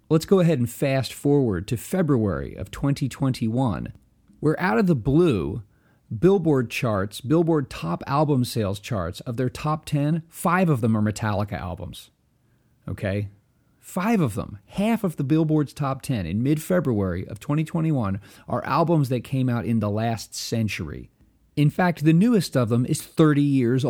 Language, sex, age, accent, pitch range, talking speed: English, male, 40-59, American, 110-150 Hz, 160 wpm